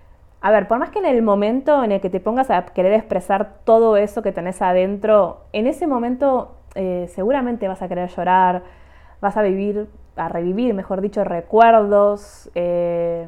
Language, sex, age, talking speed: Spanish, female, 20-39, 175 wpm